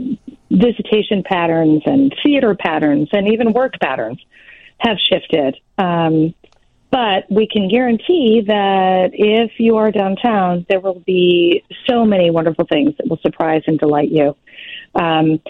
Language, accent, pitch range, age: English, American, 170-210 Hz, 40-59